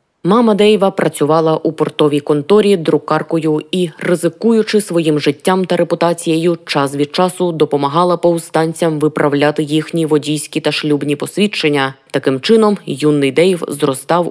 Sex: female